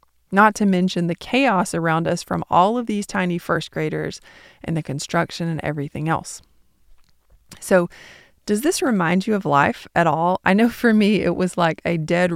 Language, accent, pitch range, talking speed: English, American, 160-195 Hz, 185 wpm